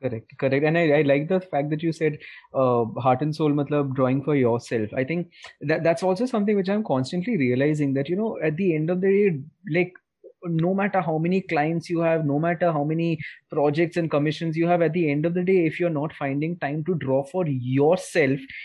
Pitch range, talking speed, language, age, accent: 145-180 Hz, 225 wpm, English, 20-39, Indian